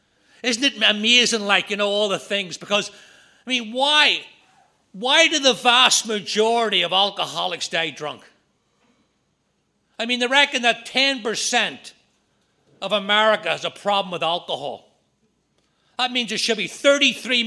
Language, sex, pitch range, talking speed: English, male, 200-250 Hz, 140 wpm